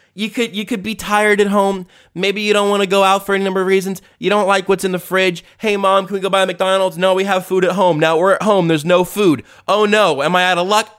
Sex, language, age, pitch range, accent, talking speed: male, English, 20-39, 155-200 Hz, American, 300 wpm